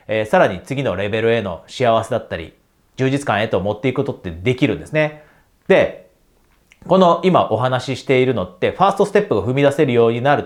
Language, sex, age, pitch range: Japanese, male, 40-59, 120-175 Hz